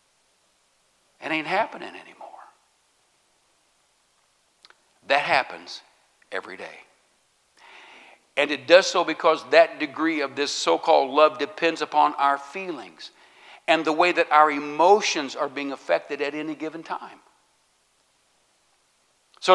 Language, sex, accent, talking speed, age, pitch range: English, male, American, 115 wpm, 60-79, 140-175 Hz